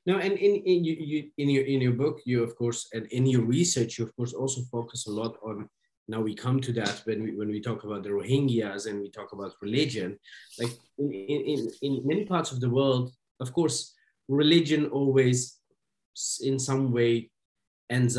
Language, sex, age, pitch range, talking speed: English, male, 30-49, 110-135 Hz, 205 wpm